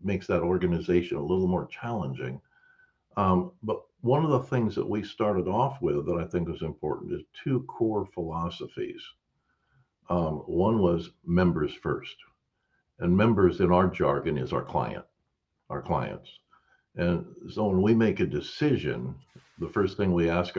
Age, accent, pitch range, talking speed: 60-79, American, 75-115 Hz, 155 wpm